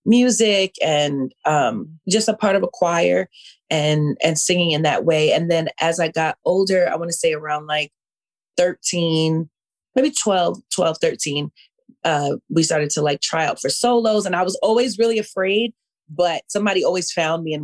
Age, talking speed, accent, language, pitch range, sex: 30-49, 180 wpm, American, English, 160-225 Hz, female